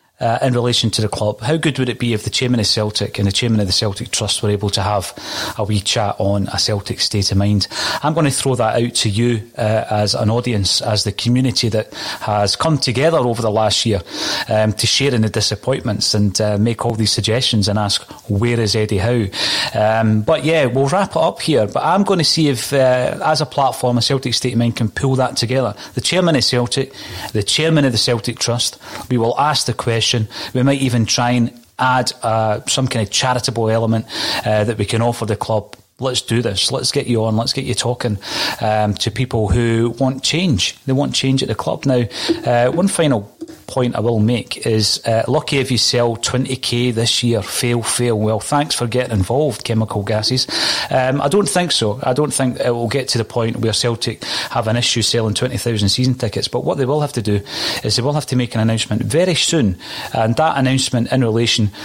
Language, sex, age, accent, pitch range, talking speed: English, male, 30-49, British, 110-130 Hz, 225 wpm